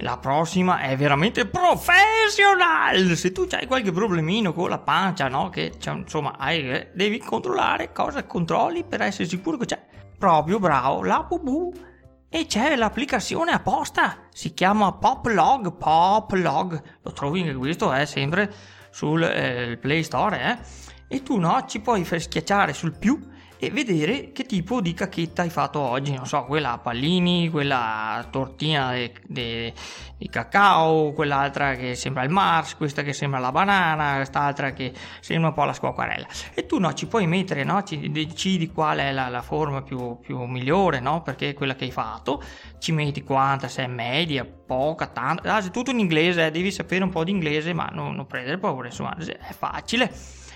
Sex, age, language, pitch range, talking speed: male, 30-49, Italian, 135-190 Hz, 175 wpm